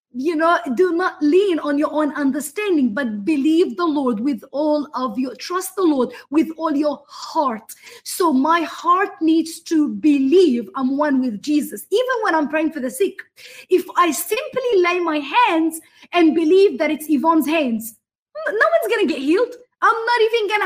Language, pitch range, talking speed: English, 275-355 Hz, 185 wpm